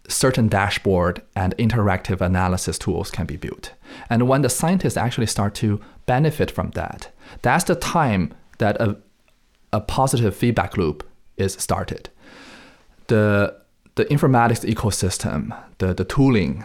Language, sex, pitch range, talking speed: English, male, 95-115 Hz, 135 wpm